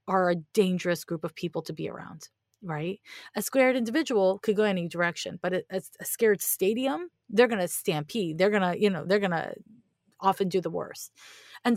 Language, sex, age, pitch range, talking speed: English, female, 30-49, 170-210 Hz, 200 wpm